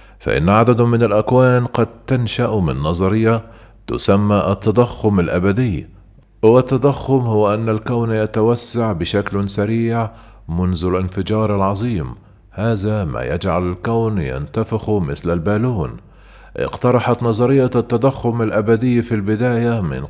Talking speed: 105 wpm